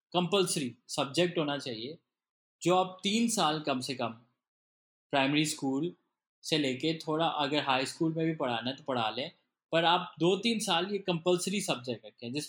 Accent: Indian